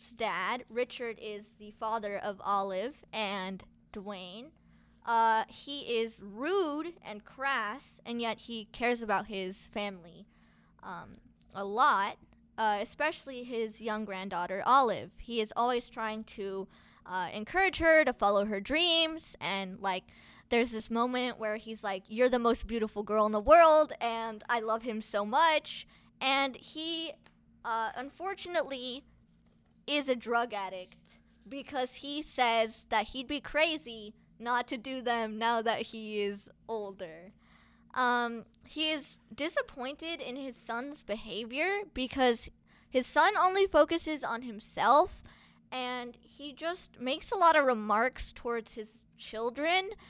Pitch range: 215-275 Hz